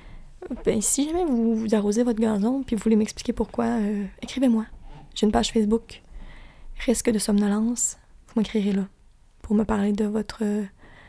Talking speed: 160 wpm